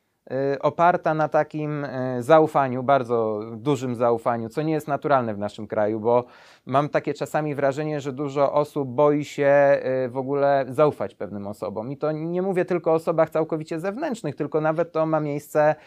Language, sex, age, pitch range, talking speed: Polish, male, 30-49, 140-165 Hz, 165 wpm